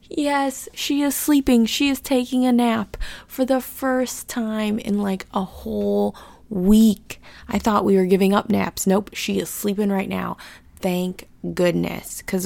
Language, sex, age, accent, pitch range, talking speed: English, female, 20-39, American, 175-225 Hz, 165 wpm